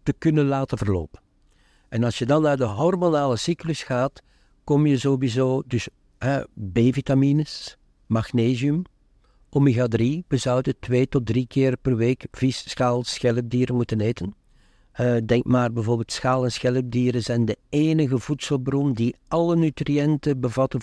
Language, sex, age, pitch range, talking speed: Dutch, male, 60-79, 115-140 Hz, 140 wpm